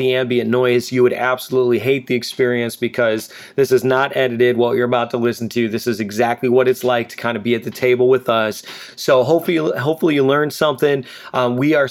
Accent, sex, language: American, male, English